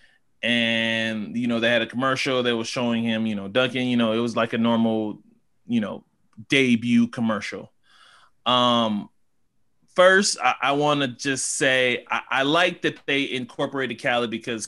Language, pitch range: English, 115-140 Hz